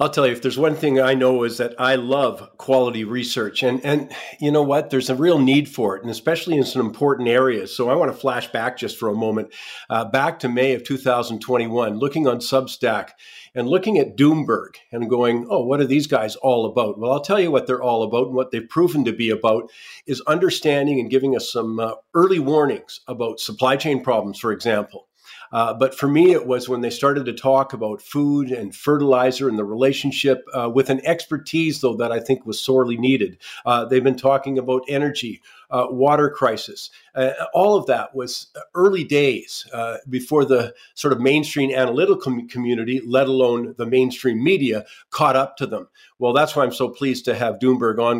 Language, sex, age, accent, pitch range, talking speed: English, male, 50-69, American, 120-140 Hz, 205 wpm